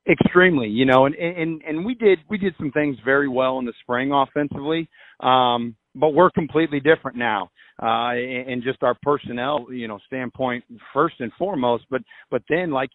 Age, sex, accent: 40-59, male, American